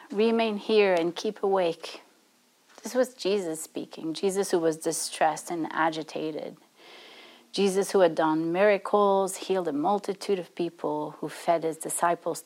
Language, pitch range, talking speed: English, 165-205 Hz, 140 wpm